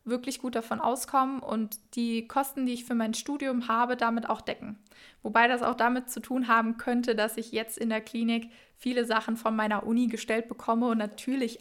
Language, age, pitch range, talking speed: German, 20-39, 220-245 Hz, 200 wpm